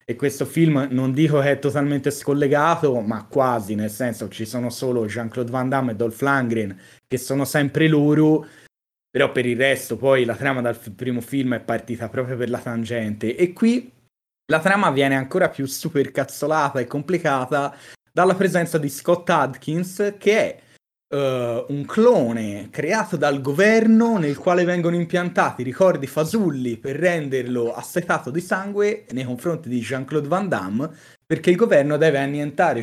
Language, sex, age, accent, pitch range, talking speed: Italian, male, 30-49, native, 125-170 Hz, 160 wpm